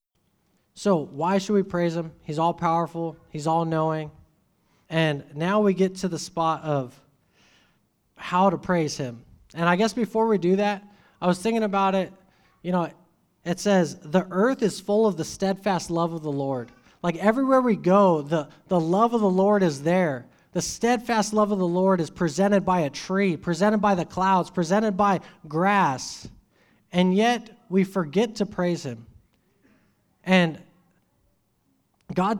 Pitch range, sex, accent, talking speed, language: 155-195 Hz, male, American, 165 wpm, English